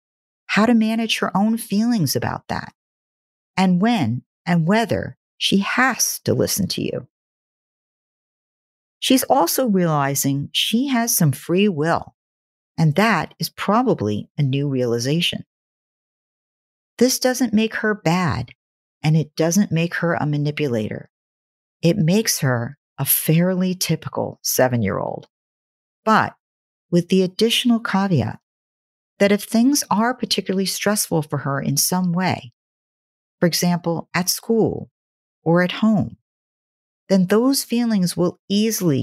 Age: 50-69